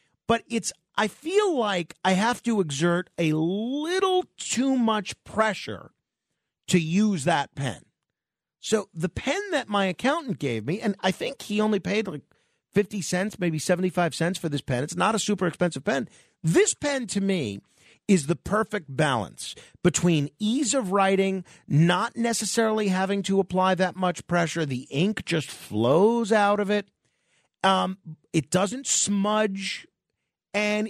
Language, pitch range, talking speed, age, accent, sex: English, 155-215 Hz, 155 wpm, 50-69, American, male